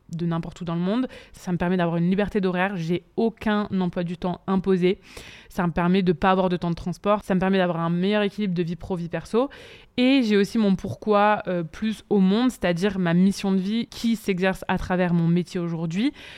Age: 20-39